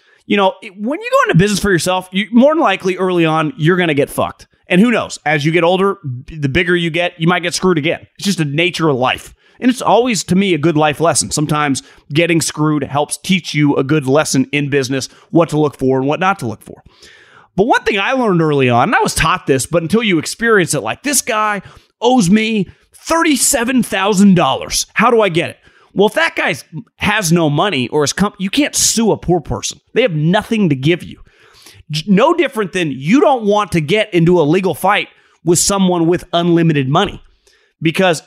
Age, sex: 30-49, male